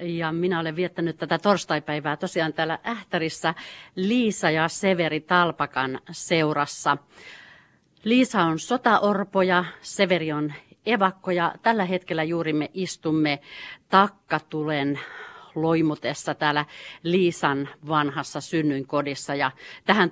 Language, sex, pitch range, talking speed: Finnish, female, 150-185 Hz, 100 wpm